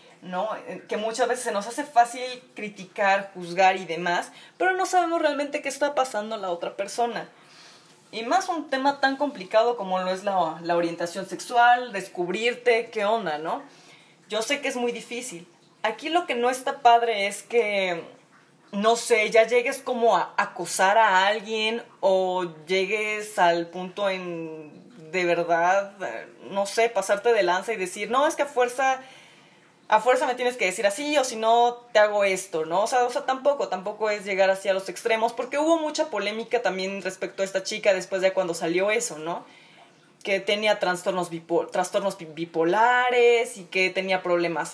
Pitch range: 185-250 Hz